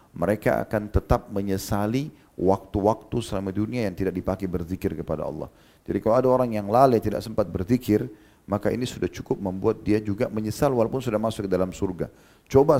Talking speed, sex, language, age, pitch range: 175 wpm, male, Indonesian, 40-59, 95-110 Hz